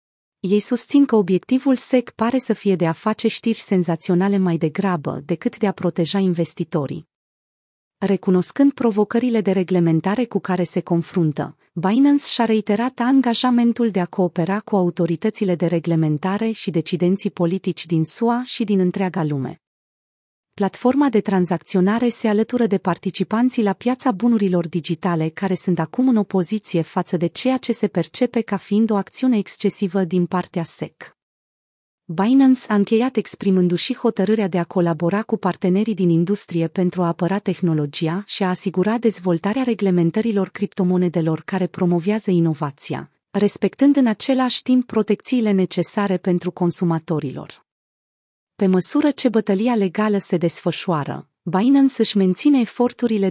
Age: 30-49